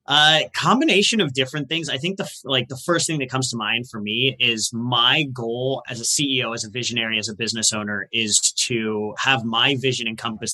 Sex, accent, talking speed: male, American, 210 wpm